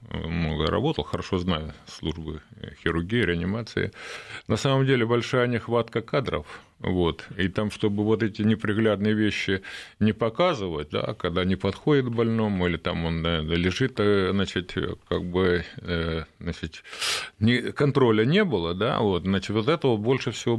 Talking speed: 135 wpm